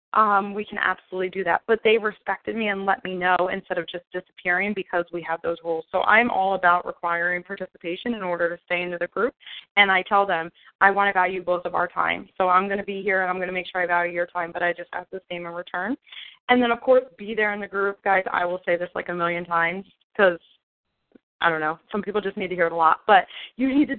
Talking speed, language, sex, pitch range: 270 wpm, English, female, 180-215 Hz